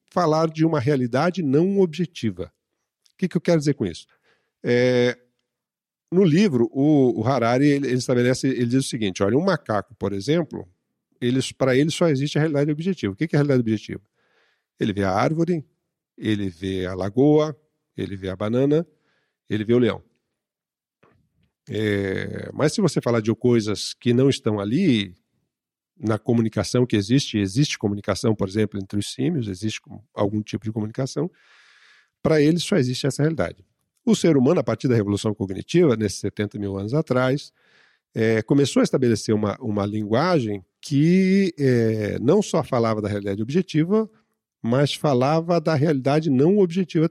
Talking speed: 155 wpm